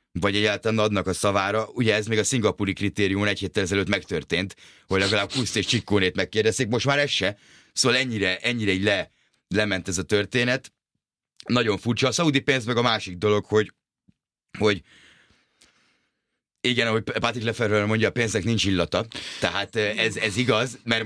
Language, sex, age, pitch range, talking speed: Hungarian, male, 30-49, 95-115 Hz, 170 wpm